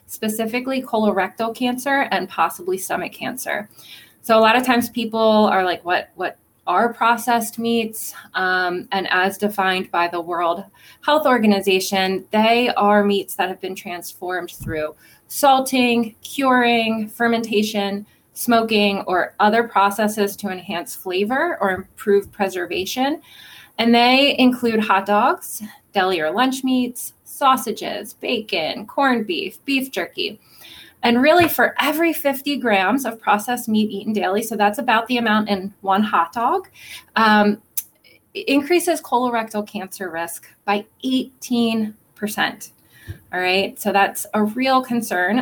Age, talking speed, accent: 20-39, 130 wpm, American